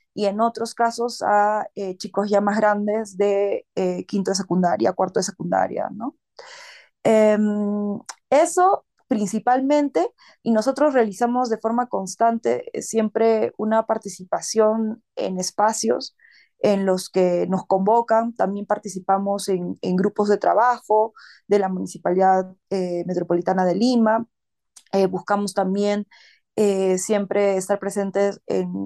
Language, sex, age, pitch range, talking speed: Spanish, female, 20-39, 190-220 Hz, 125 wpm